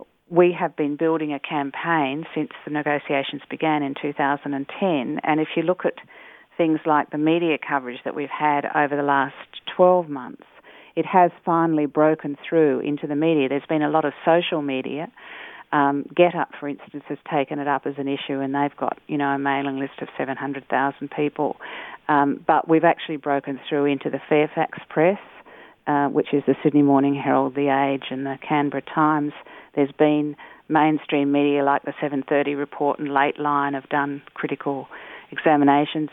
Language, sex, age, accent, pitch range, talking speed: English, female, 40-59, Australian, 140-155 Hz, 175 wpm